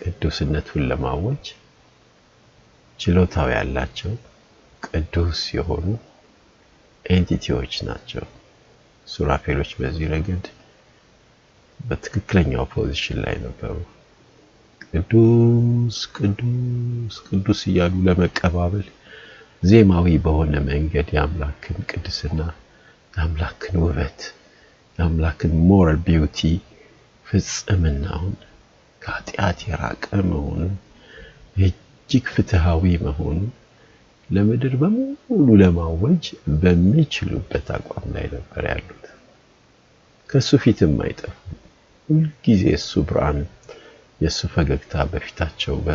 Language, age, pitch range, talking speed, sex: Amharic, 60-79, 80-110 Hz, 70 wpm, male